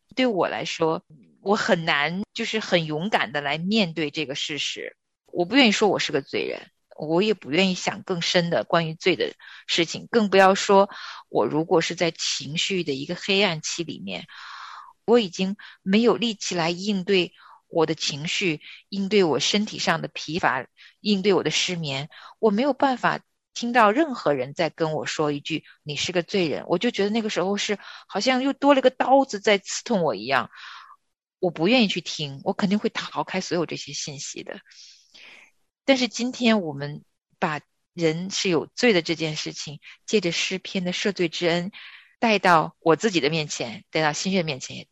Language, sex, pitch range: Chinese, female, 160-210 Hz